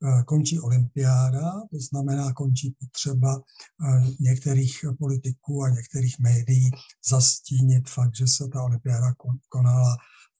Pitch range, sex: 125-145 Hz, male